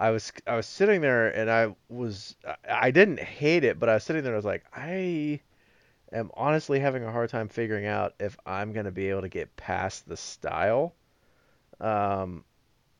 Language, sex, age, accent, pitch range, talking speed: English, male, 30-49, American, 100-120 Hz, 195 wpm